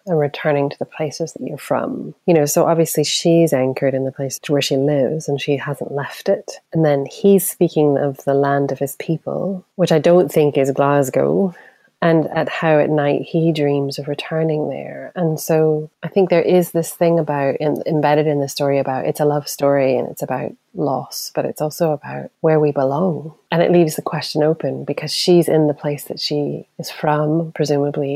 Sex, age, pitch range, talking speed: female, 30-49, 145-175 Hz, 205 wpm